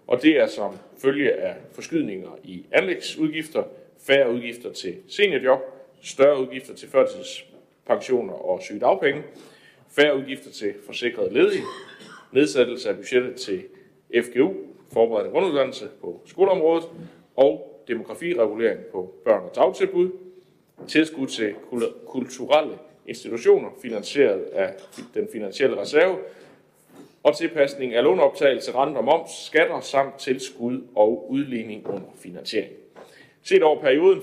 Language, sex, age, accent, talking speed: Danish, male, 60-79, native, 115 wpm